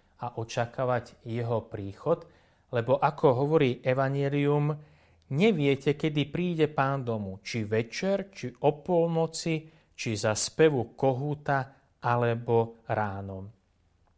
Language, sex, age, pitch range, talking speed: Slovak, male, 30-49, 110-155 Hz, 100 wpm